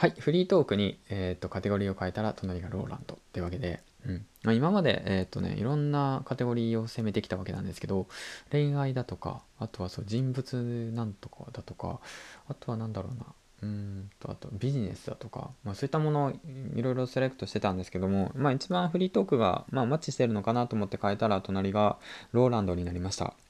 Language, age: Japanese, 20-39